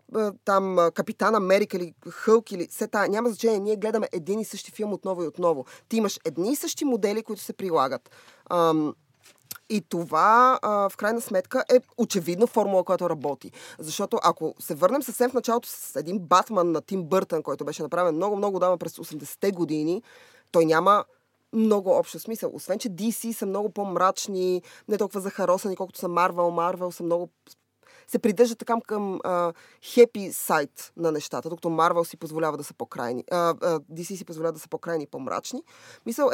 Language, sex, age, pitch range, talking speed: Bulgarian, female, 20-39, 170-215 Hz, 175 wpm